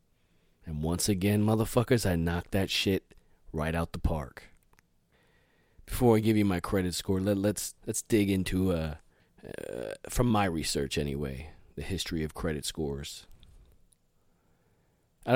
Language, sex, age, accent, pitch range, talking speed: English, male, 30-49, American, 80-95 Hz, 140 wpm